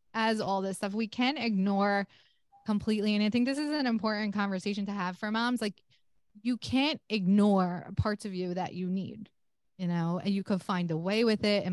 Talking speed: 215 wpm